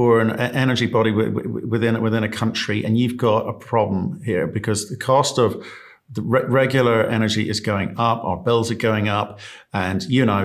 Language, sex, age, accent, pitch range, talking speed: English, male, 50-69, British, 105-125 Hz, 185 wpm